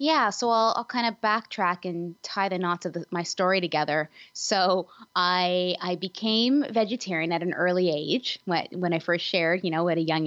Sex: female